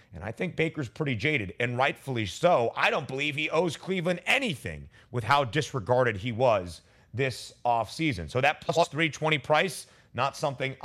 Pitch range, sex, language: 125-175 Hz, male, English